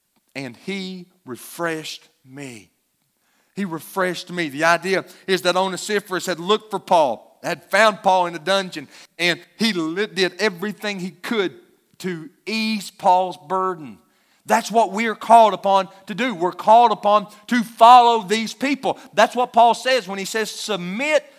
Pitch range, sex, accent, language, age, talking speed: 175-245 Hz, male, American, English, 40-59, 155 wpm